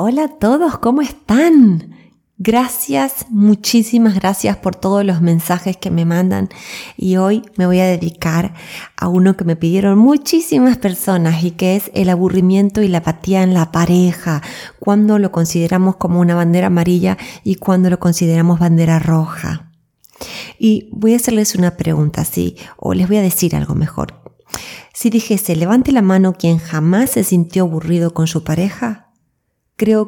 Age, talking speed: 20-39, 160 wpm